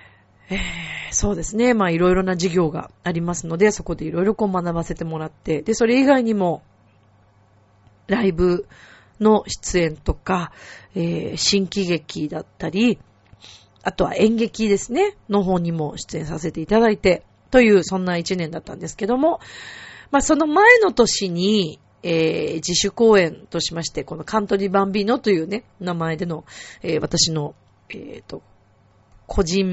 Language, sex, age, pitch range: Japanese, female, 40-59, 155-235 Hz